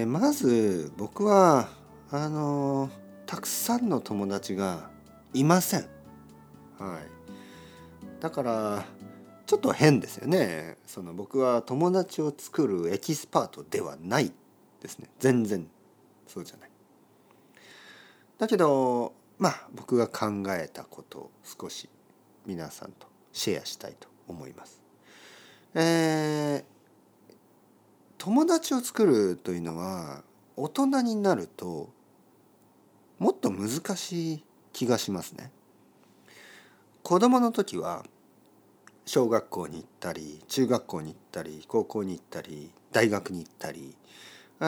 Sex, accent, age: male, native, 40-59